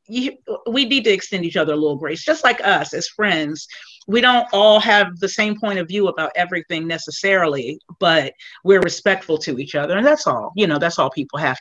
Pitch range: 155-195 Hz